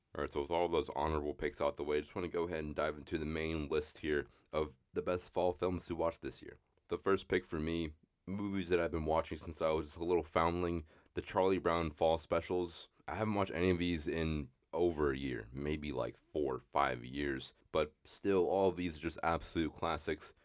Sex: male